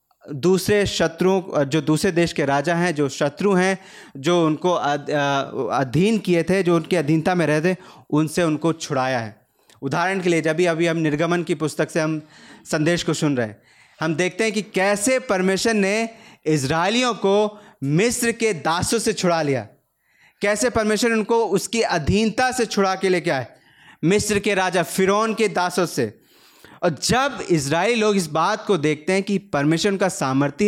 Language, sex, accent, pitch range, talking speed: Hindi, male, native, 160-210 Hz, 170 wpm